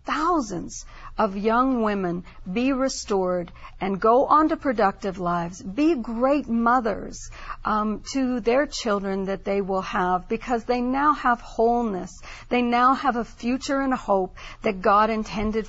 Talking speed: 150 wpm